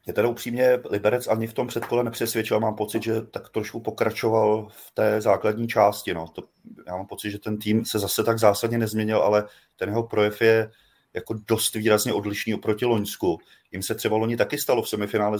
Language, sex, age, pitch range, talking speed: Czech, male, 30-49, 105-115 Hz, 200 wpm